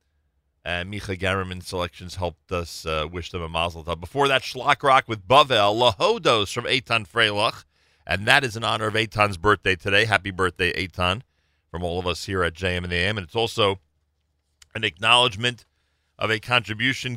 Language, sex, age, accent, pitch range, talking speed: English, male, 40-59, American, 80-105 Hz, 170 wpm